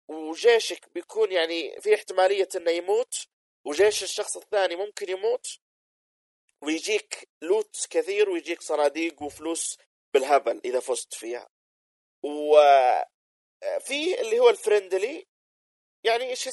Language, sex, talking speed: Arabic, male, 100 wpm